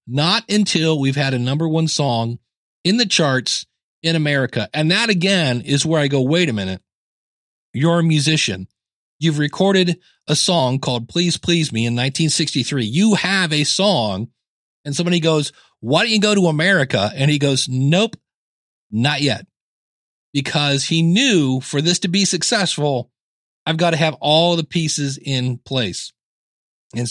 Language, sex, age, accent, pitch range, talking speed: English, male, 40-59, American, 130-170 Hz, 160 wpm